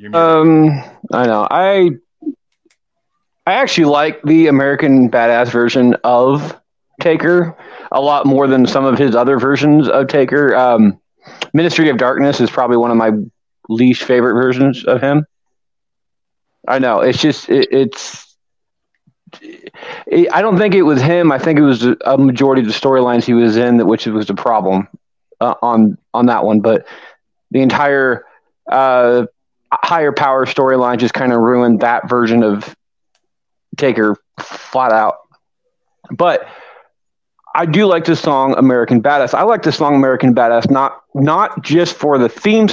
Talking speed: 155 wpm